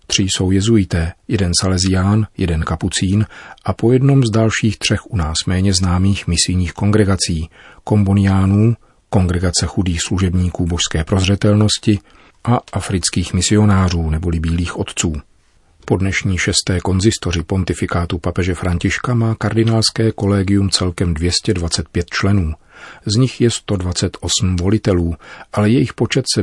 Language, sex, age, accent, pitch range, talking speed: Czech, male, 40-59, native, 85-105 Hz, 120 wpm